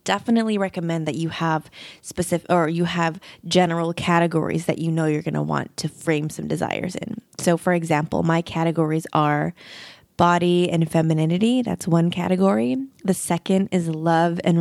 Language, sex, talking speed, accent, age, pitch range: English, female, 165 wpm, American, 20-39, 160-195 Hz